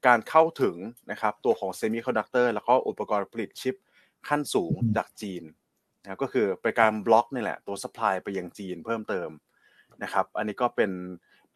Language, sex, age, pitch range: Thai, male, 20-39, 100-130 Hz